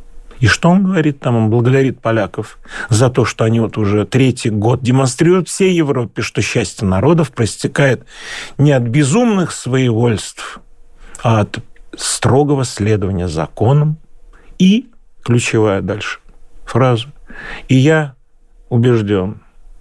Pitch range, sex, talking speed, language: 110-150 Hz, male, 120 wpm, Russian